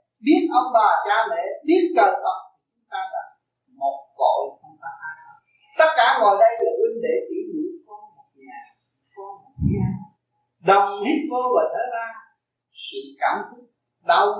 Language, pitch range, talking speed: Vietnamese, 210-340 Hz, 165 wpm